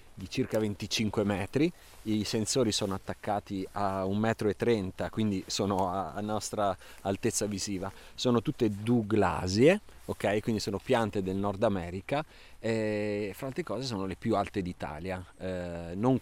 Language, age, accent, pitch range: Italian, 30-49, native, 95-115 Hz